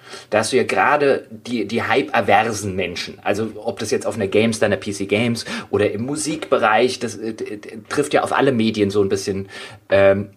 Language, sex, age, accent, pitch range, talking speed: German, male, 30-49, German, 110-130 Hz, 195 wpm